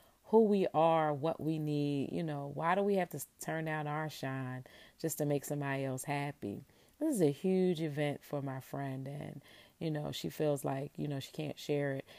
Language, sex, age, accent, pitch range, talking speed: English, female, 30-49, American, 130-165 Hz, 210 wpm